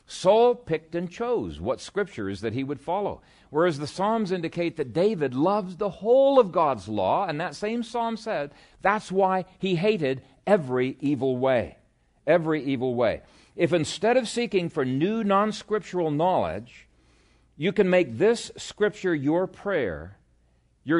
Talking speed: 150 wpm